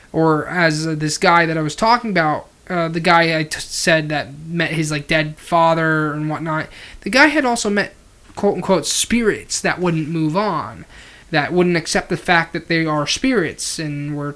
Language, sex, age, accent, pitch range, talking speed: English, male, 20-39, American, 150-190 Hz, 195 wpm